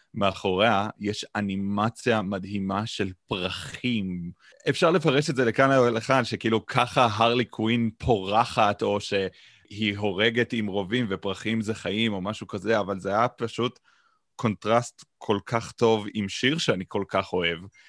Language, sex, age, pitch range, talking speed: Hebrew, male, 30-49, 95-115 Hz, 145 wpm